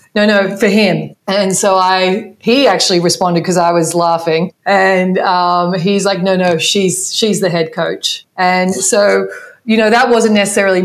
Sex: female